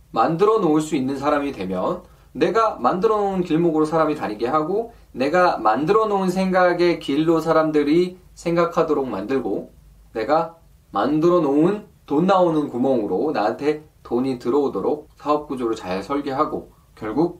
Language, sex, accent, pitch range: Korean, male, native, 130-180 Hz